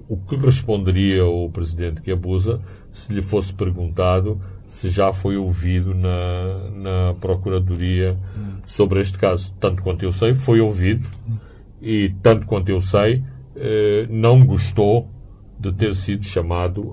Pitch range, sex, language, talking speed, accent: 90-100 Hz, male, Portuguese, 140 wpm, Brazilian